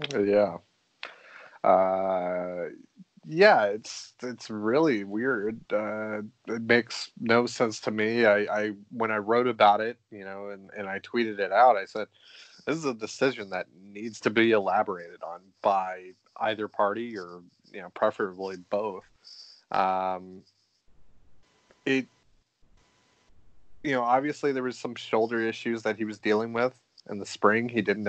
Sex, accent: male, American